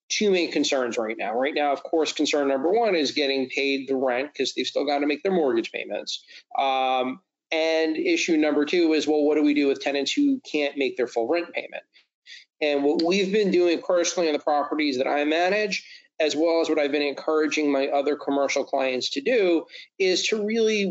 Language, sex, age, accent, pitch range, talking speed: English, male, 30-49, American, 135-170 Hz, 210 wpm